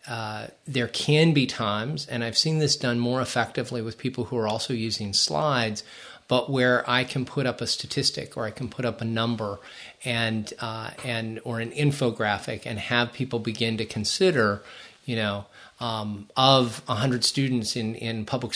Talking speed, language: 180 wpm, English